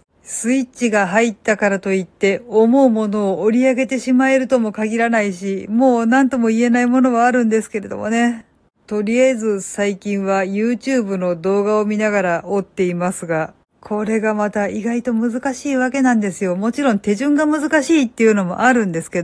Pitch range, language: 195-250 Hz, Japanese